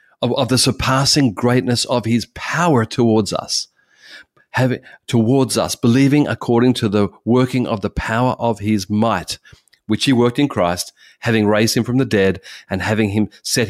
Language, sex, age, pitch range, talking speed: English, male, 30-49, 100-125 Hz, 165 wpm